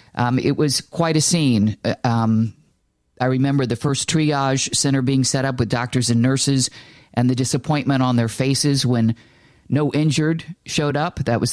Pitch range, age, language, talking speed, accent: 120-145 Hz, 50-69, English, 175 wpm, American